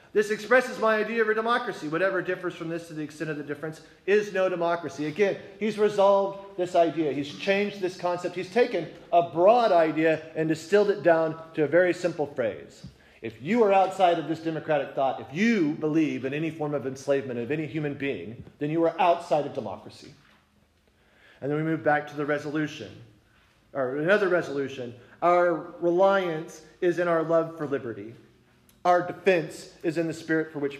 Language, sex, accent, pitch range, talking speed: English, male, American, 140-175 Hz, 185 wpm